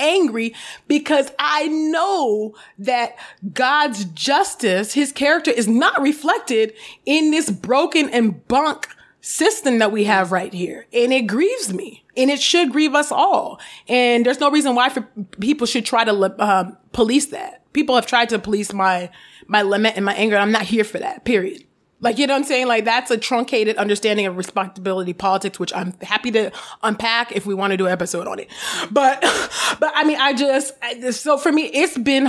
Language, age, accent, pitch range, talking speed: English, 30-49, American, 210-285 Hz, 190 wpm